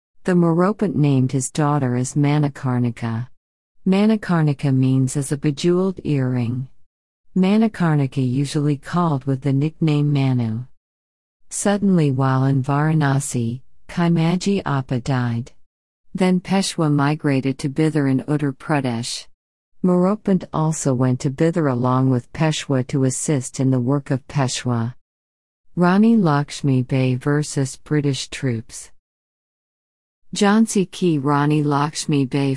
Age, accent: 50-69, American